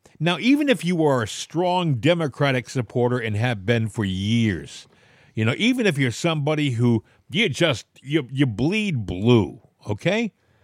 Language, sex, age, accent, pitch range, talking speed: English, male, 50-69, American, 125-185 Hz, 160 wpm